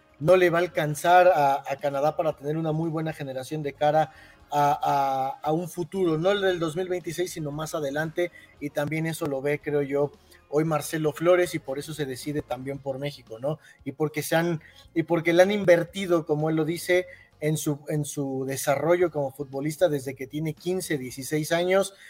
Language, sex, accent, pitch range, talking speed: Spanish, male, Mexican, 145-175 Hz, 200 wpm